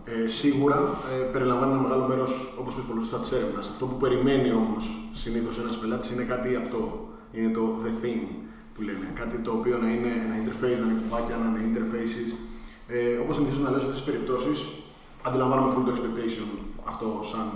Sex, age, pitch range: male, 20-39, 115-145 Hz